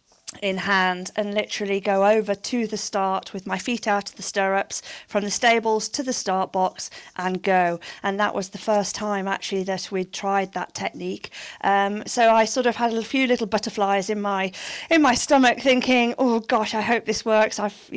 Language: English